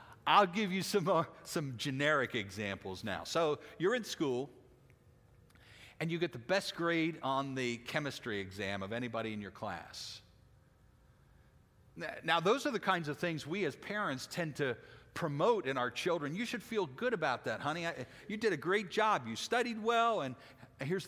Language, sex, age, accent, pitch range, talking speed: English, male, 50-69, American, 115-175 Hz, 170 wpm